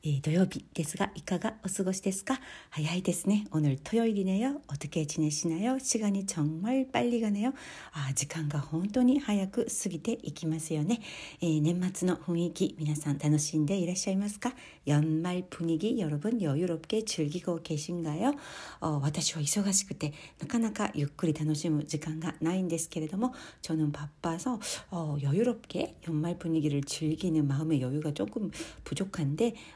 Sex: female